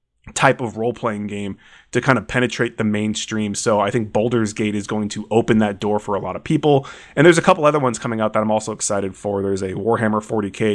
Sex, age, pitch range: male, 20-39, 105-130 Hz